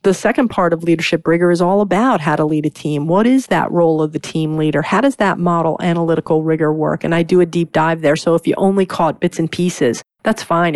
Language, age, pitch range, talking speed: English, 40-59, 160-185 Hz, 255 wpm